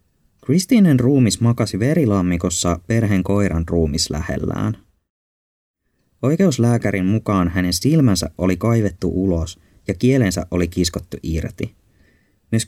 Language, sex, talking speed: Finnish, male, 100 wpm